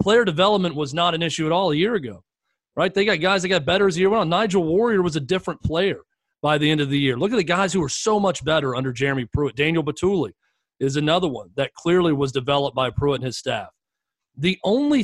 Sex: male